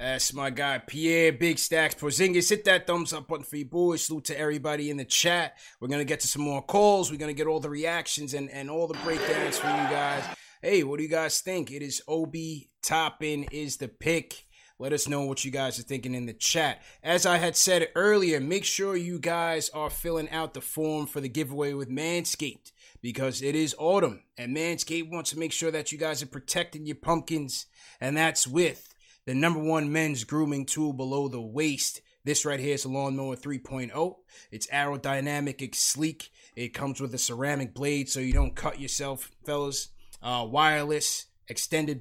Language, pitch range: English, 135-155 Hz